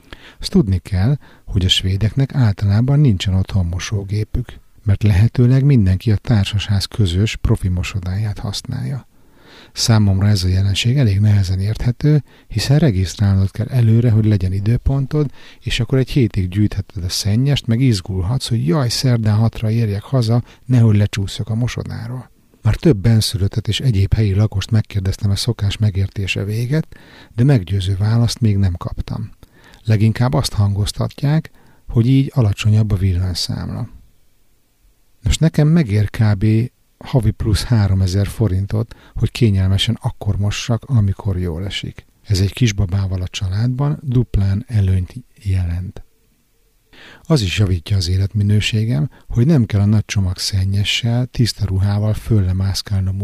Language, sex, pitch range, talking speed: Hungarian, male, 100-120 Hz, 130 wpm